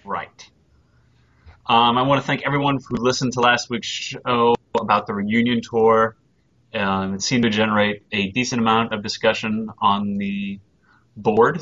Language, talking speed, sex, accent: English, 155 wpm, male, American